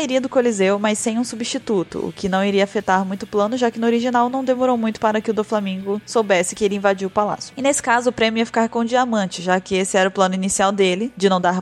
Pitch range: 190-240 Hz